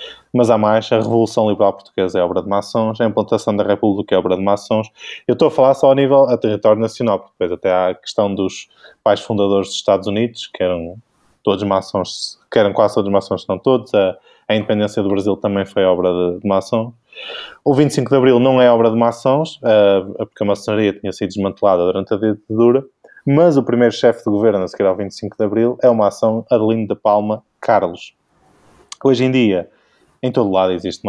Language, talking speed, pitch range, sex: Portuguese, 210 wpm, 100-120 Hz, male